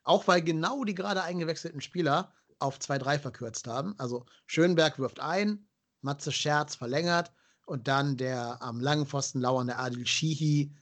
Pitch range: 130-155 Hz